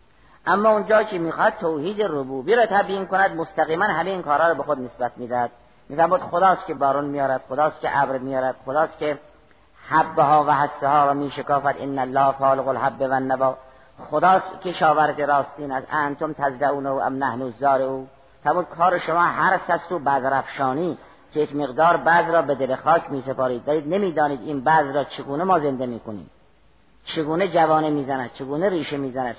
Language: Persian